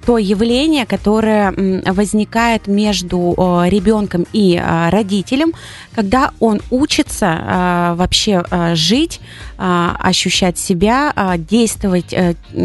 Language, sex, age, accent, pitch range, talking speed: Russian, female, 30-49, native, 180-225 Hz, 75 wpm